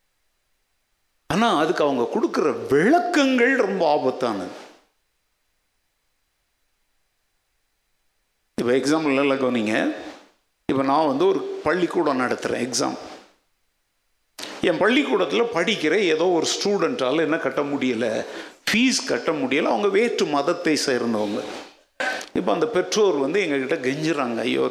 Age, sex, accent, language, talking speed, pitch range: 50-69, male, native, Tamil, 95 wpm, 135-230 Hz